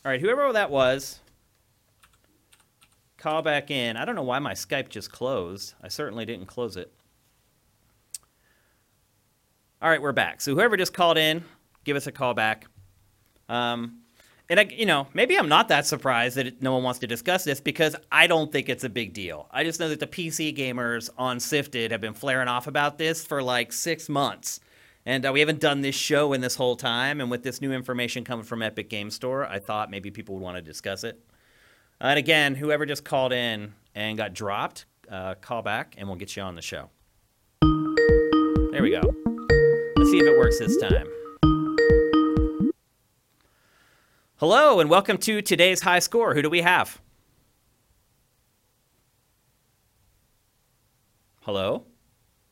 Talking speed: 175 wpm